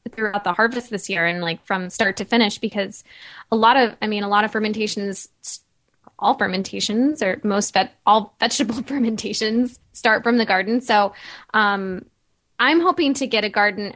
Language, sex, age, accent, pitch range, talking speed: English, female, 10-29, American, 200-240 Hz, 175 wpm